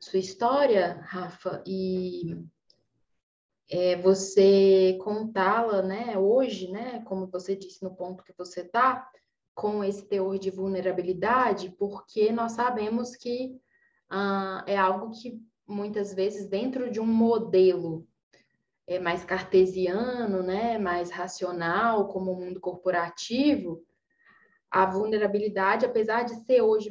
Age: 10-29